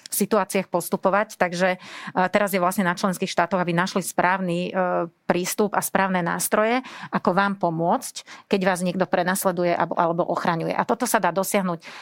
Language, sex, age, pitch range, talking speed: Slovak, female, 40-59, 175-195 Hz, 155 wpm